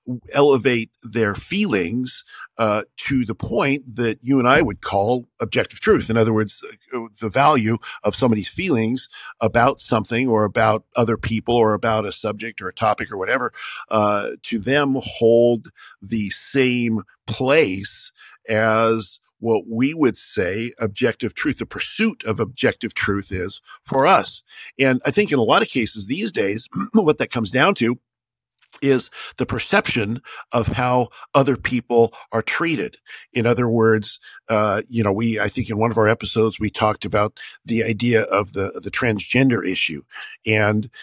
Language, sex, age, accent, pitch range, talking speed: English, male, 50-69, American, 110-125 Hz, 160 wpm